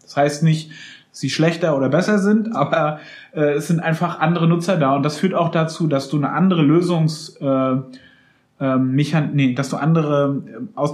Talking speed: 180 wpm